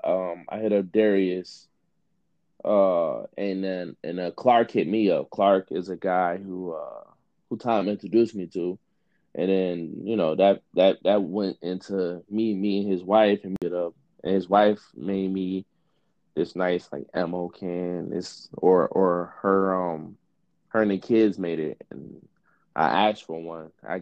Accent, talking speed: American, 170 wpm